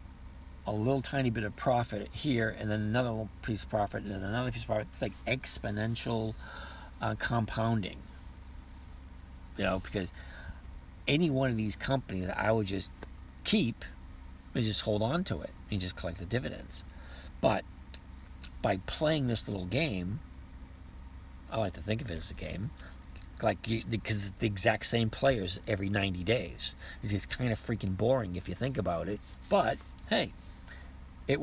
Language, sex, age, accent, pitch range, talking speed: English, male, 50-69, American, 65-115 Hz, 165 wpm